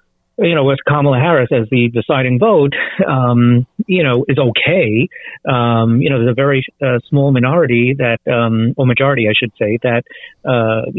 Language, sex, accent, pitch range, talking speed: English, male, American, 120-155 Hz, 175 wpm